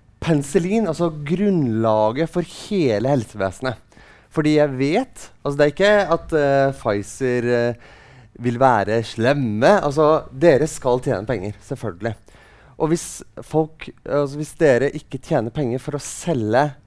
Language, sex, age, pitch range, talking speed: English, male, 30-49, 115-165 Hz, 135 wpm